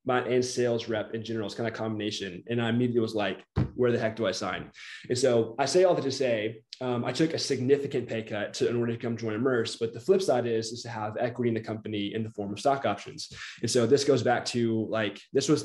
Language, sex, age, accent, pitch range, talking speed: English, male, 20-39, American, 115-130 Hz, 270 wpm